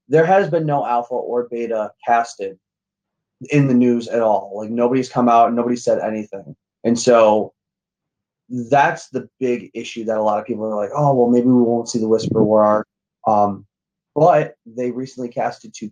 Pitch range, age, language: 110-130 Hz, 20-39, English